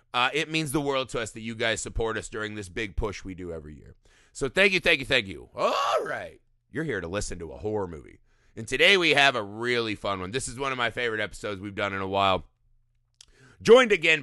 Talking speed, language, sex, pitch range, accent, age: 250 wpm, English, male, 105-135 Hz, American, 30-49